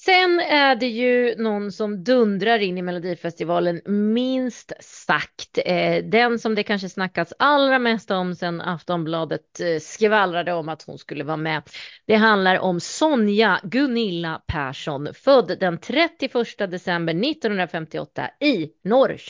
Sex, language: female, Swedish